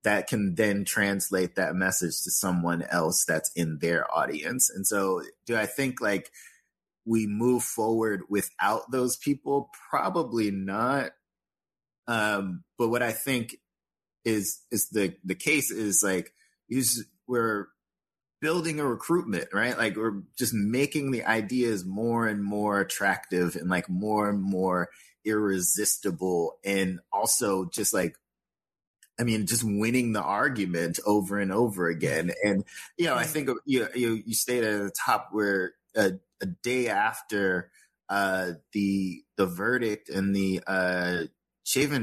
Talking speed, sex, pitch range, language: 140 wpm, male, 95-115 Hz, English